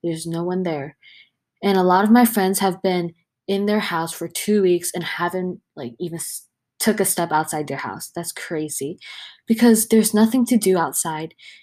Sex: female